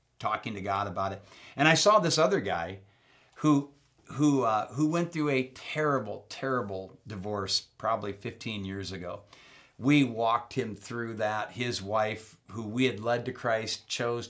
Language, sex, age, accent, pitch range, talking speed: English, male, 50-69, American, 100-130 Hz, 165 wpm